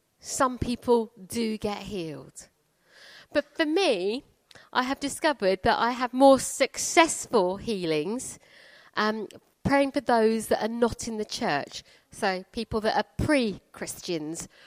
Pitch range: 205-265 Hz